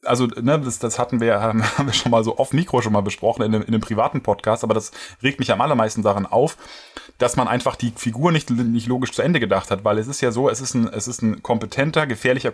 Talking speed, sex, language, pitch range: 265 wpm, male, German, 110-140 Hz